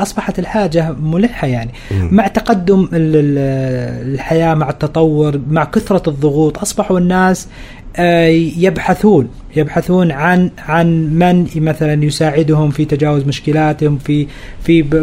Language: Arabic